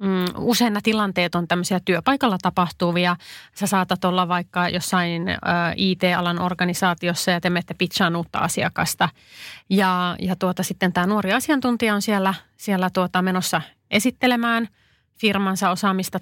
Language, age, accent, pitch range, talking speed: Finnish, 30-49, native, 175-205 Hz, 130 wpm